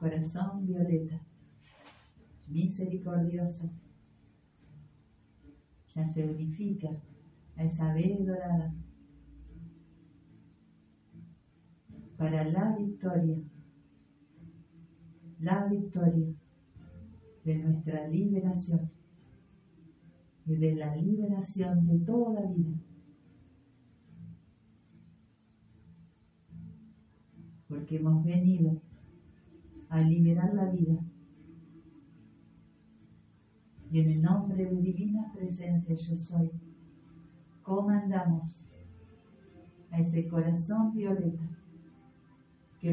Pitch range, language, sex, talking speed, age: 155-175 Hz, Spanish, female, 65 wpm, 50-69